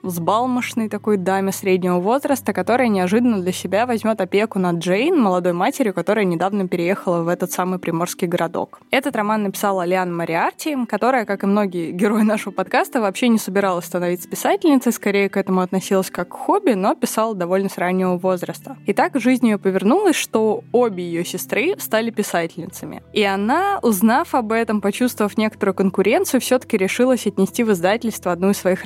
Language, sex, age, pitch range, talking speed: Russian, female, 20-39, 185-245 Hz, 170 wpm